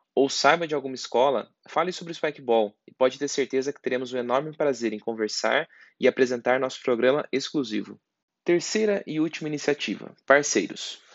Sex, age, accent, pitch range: male, 20-39, Brazilian, 115-145 Hz